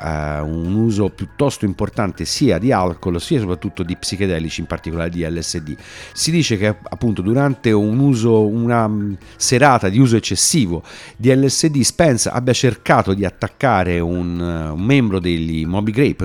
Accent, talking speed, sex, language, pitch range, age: native, 150 wpm, male, Italian, 90-130 Hz, 50-69